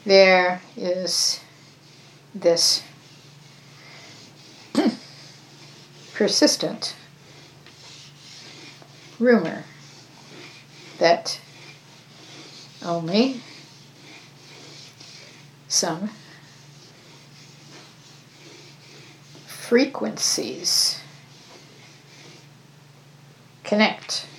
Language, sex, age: English, female, 60-79